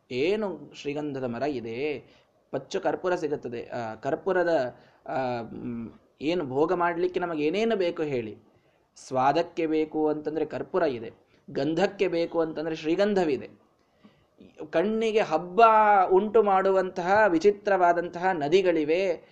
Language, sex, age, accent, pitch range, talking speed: Kannada, male, 20-39, native, 145-195 Hz, 95 wpm